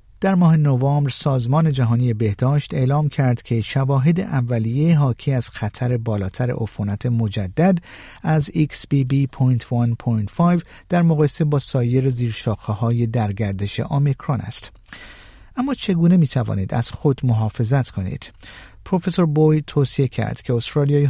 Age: 50-69